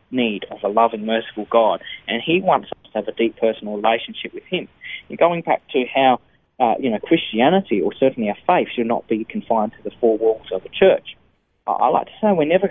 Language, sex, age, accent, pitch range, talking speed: English, male, 20-39, Australian, 115-150 Hz, 225 wpm